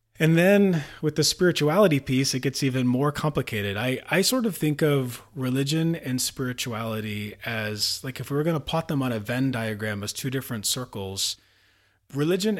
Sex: male